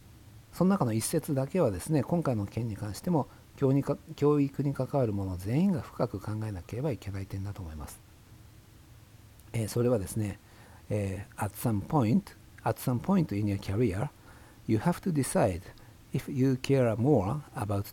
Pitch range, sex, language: 105-130 Hz, male, Japanese